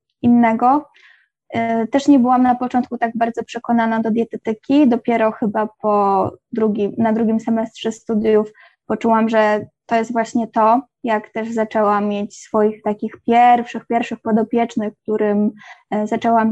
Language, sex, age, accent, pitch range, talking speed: Polish, female, 20-39, native, 220-240 Hz, 125 wpm